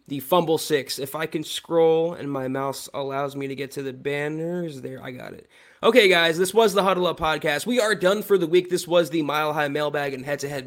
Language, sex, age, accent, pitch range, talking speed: English, male, 20-39, American, 145-175 Hz, 240 wpm